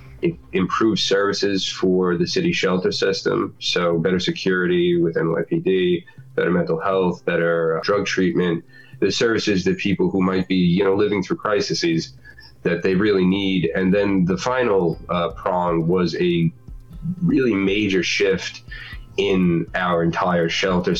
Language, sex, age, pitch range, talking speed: English, male, 20-39, 85-105 Hz, 140 wpm